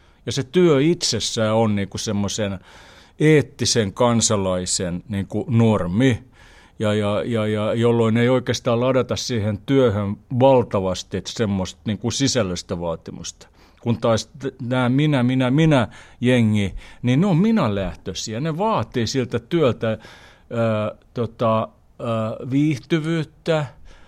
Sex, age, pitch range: male, 60-79, 100-130 Hz